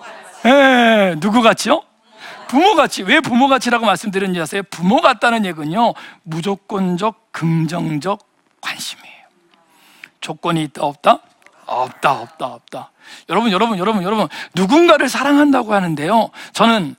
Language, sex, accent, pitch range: Korean, male, native, 185-300 Hz